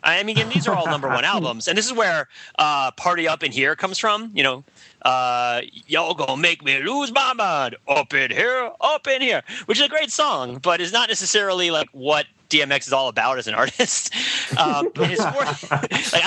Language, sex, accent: English, male, American